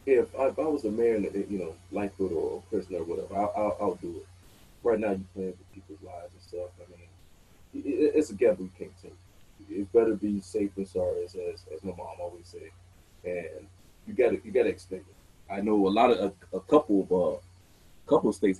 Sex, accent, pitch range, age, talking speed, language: male, American, 90-110 Hz, 30-49, 230 wpm, English